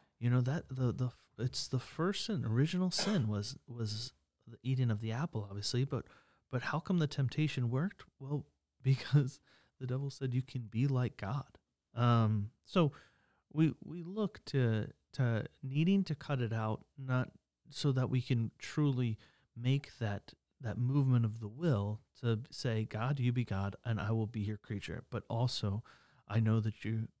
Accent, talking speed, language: American, 175 wpm, English